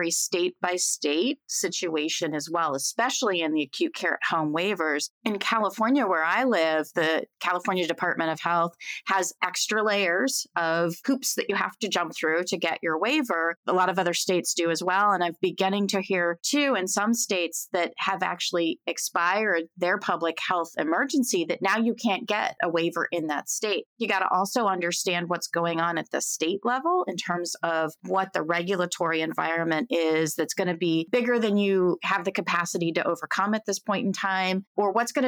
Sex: female